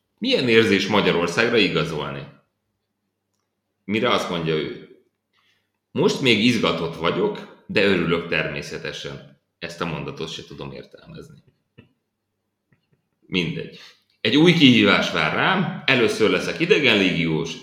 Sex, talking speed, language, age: male, 100 wpm, Hungarian, 30-49